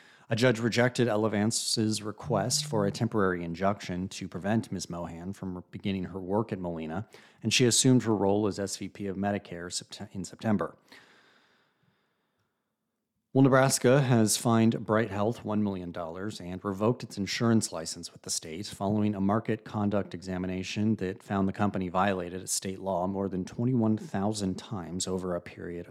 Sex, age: male, 30-49